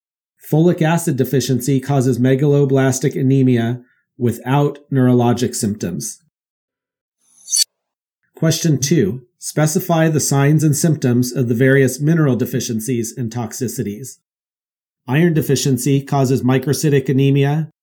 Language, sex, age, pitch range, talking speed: English, male, 40-59, 125-150 Hz, 95 wpm